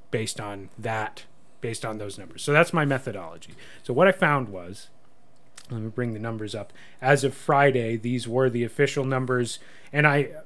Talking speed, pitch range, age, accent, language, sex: 185 wpm, 105-135 Hz, 30-49, American, English, male